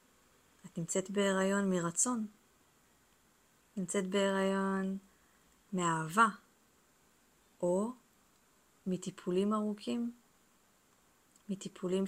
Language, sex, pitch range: Hebrew, female, 195-230 Hz